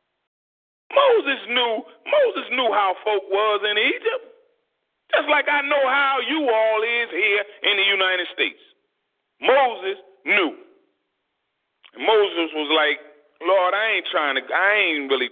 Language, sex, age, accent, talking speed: English, male, 30-49, American, 140 wpm